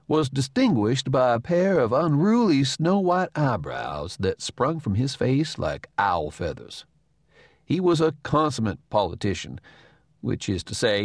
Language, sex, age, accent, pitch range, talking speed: English, male, 60-79, American, 100-150 Hz, 140 wpm